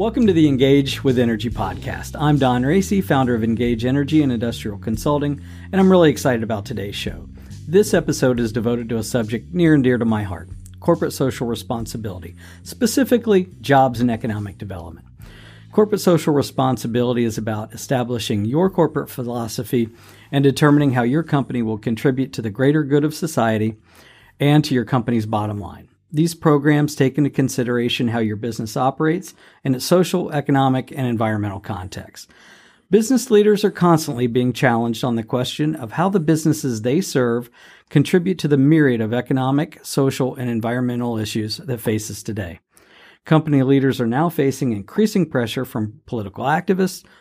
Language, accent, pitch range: English, American, 115-150 Hz